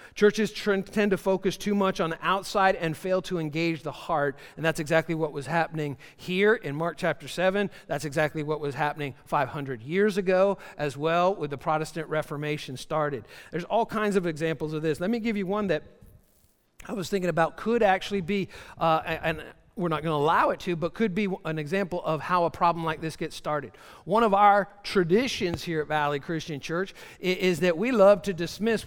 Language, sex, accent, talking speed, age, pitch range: English, male, American, 200 wpm, 50-69, 155-195 Hz